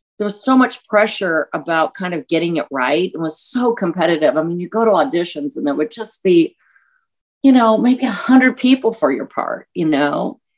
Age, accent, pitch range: 50-69, American, 160-255 Hz